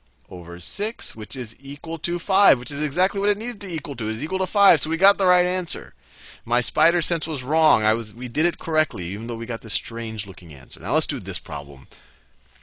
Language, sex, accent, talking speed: English, male, American, 240 wpm